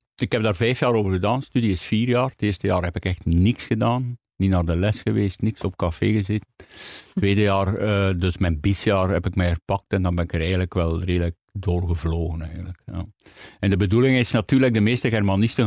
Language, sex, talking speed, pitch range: Dutch, male, 220 wpm, 90-110 Hz